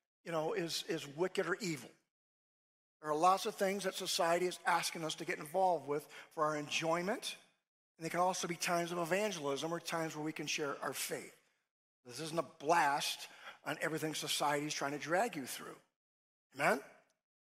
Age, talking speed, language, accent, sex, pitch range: 50-69, 185 wpm, English, American, male, 170-255 Hz